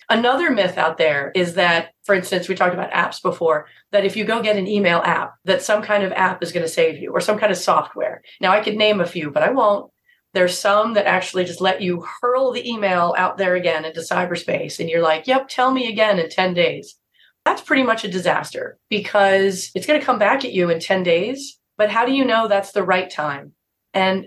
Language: English